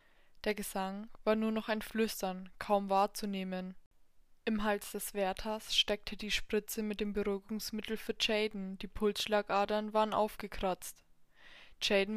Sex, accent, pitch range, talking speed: female, German, 195-220 Hz, 130 wpm